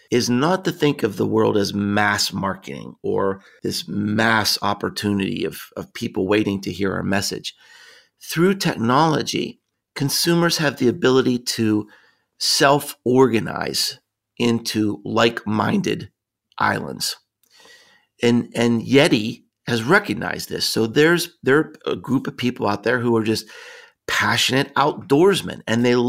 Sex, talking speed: male, 130 wpm